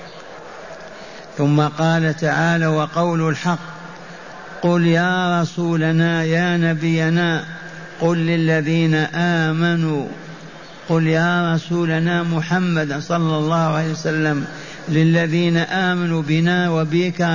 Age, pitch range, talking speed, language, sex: 50-69, 155-175 Hz, 85 wpm, Arabic, male